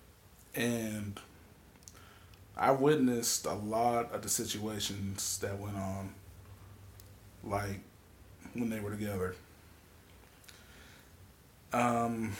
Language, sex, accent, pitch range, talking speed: English, male, American, 95-120 Hz, 80 wpm